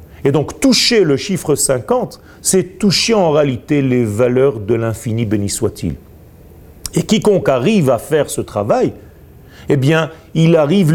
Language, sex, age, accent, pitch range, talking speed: French, male, 40-59, French, 120-170 Hz, 150 wpm